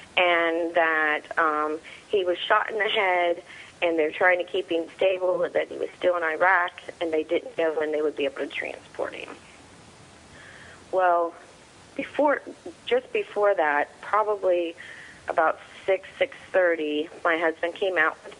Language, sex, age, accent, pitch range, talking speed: English, female, 40-59, American, 175-260 Hz, 160 wpm